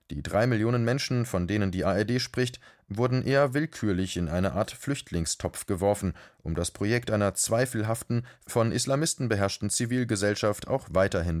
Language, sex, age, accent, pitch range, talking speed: German, male, 30-49, German, 95-120 Hz, 145 wpm